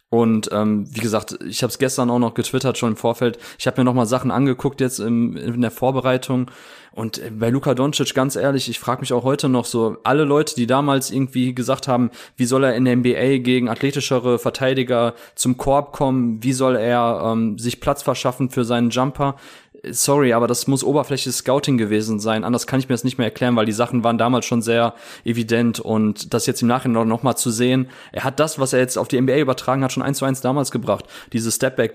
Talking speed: 225 wpm